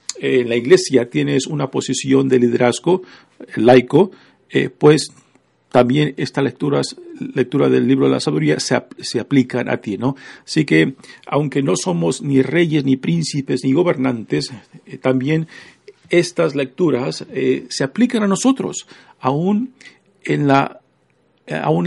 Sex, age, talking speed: male, 50-69, 140 wpm